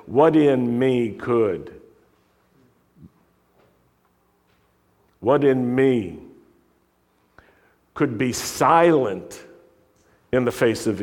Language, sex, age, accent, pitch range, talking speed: English, male, 50-69, American, 120-170 Hz, 75 wpm